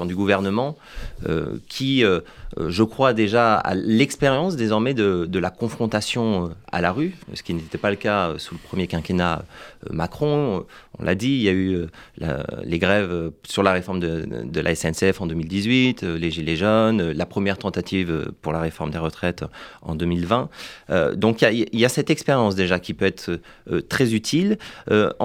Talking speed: 185 wpm